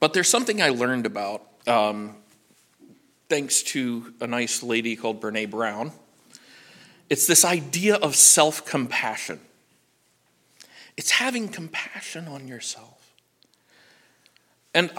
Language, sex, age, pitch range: English, male, 60-79, 120-175 Hz